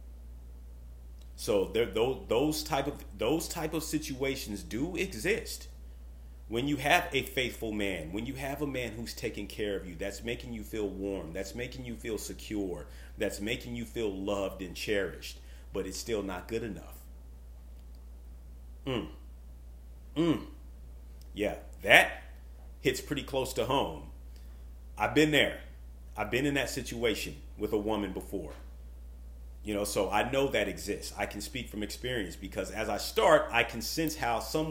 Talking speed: 160 wpm